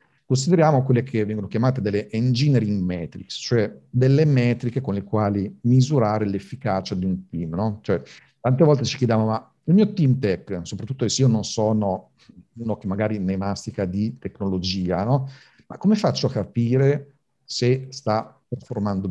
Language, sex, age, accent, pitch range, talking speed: Italian, male, 50-69, native, 100-135 Hz, 160 wpm